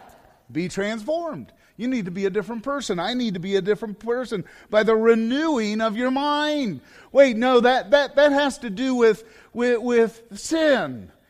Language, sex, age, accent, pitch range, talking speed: English, male, 40-59, American, 205-290 Hz, 180 wpm